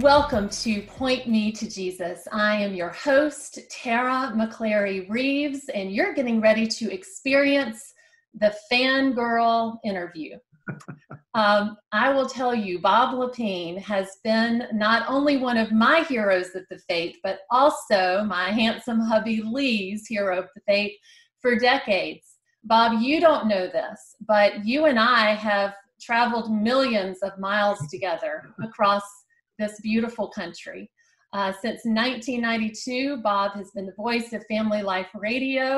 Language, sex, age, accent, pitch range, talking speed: English, female, 40-59, American, 200-255 Hz, 140 wpm